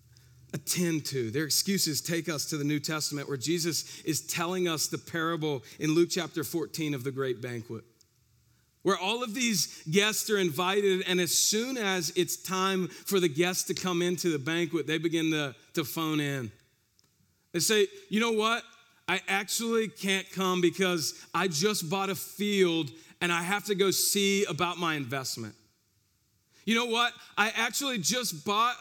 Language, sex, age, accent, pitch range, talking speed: English, male, 40-59, American, 140-195 Hz, 175 wpm